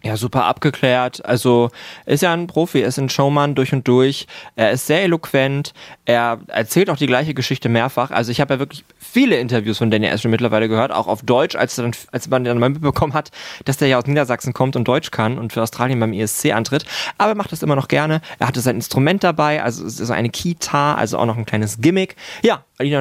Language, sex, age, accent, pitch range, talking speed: German, male, 20-39, German, 115-140 Hz, 230 wpm